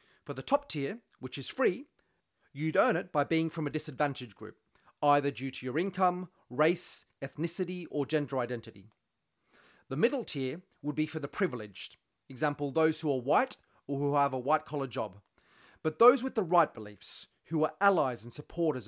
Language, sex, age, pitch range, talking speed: English, male, 30-49, 130-165 Hz, 180 wpm